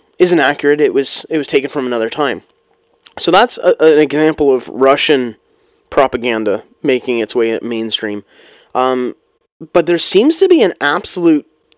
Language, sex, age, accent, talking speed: English, male, 20-39, American, 165 wpm